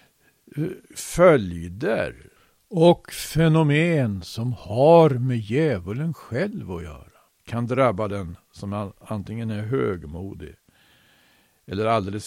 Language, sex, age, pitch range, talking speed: Swedish, male, 60-79, 100-130 Hz, 95 wpm